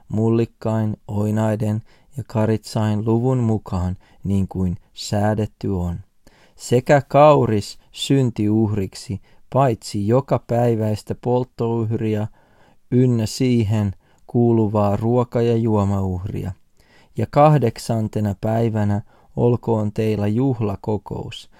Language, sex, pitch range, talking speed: Finnish, male, 105-120 Hz, 85 wpm